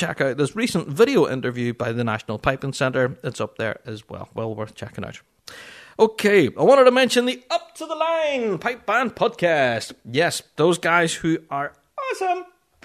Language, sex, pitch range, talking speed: English, male, 140-195 Hz, 180 wpm